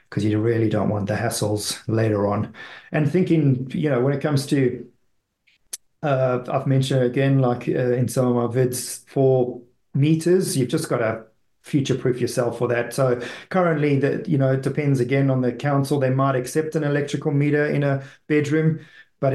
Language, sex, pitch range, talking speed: English, male, 115-135 Hz, 190 wpm